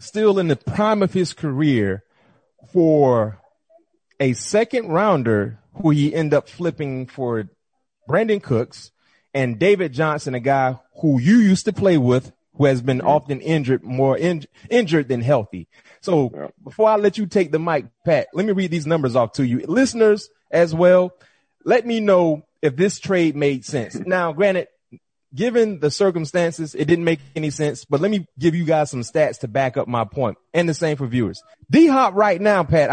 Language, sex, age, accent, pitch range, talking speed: English, male, 30-49, American, 135-195 Hz, 180 wpm